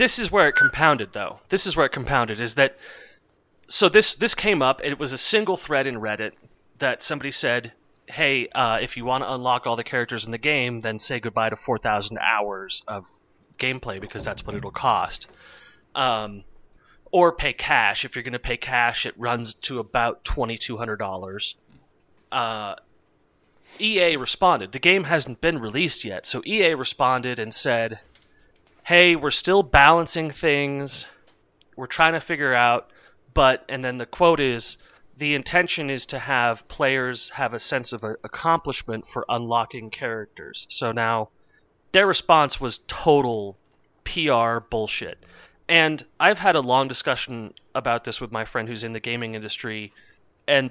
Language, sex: English, male